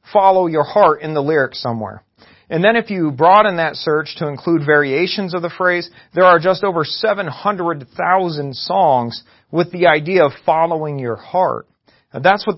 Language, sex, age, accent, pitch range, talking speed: English, male, 40-59, American, 145-185 Hz, 175 wpm